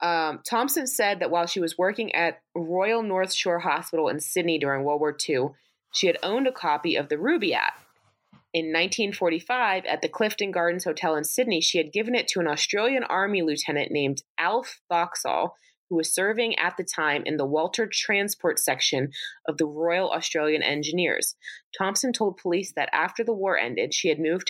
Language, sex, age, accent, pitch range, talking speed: English, female, 20-39, American, 160-215 Hz, 185 wpm